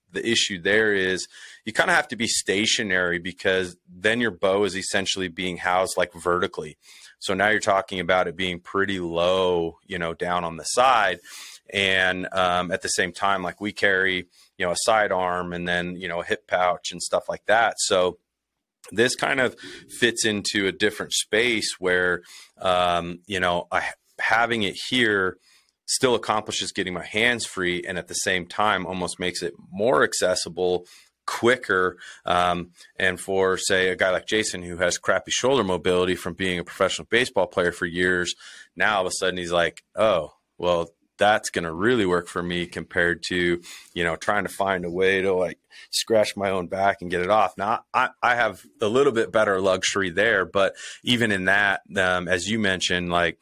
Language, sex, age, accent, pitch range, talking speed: English, male, 30-49, American, 90-95 Hz, 190 wpm